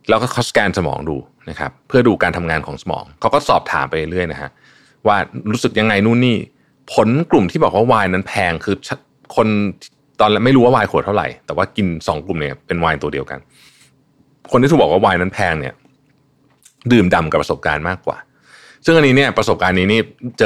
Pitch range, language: 90-120 Hz, Thai